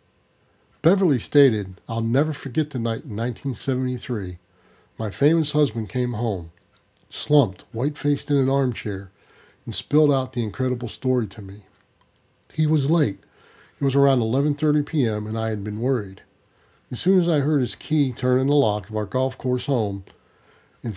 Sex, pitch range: male, 110-145 Hz